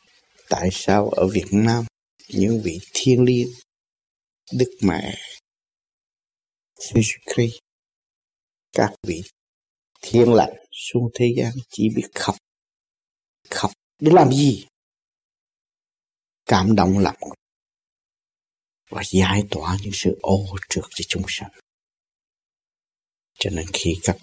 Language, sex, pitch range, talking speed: Vietnamese, male, 95-115 Hz, 110 wpm